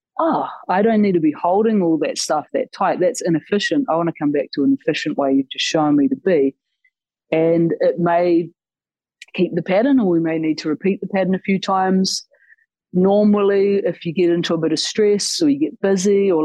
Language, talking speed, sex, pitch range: English, 220 wpm, female, 155-200 Hz